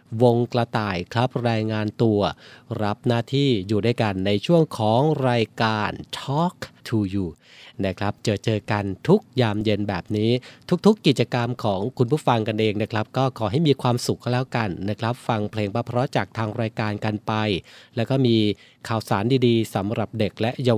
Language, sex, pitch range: Thai, male, 105-130 Hz